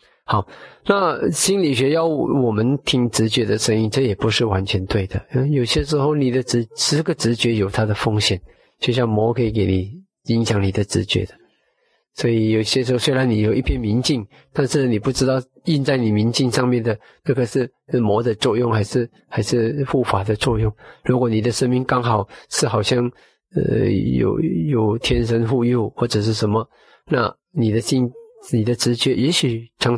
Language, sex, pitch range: Chinese, male, 110-130 Hz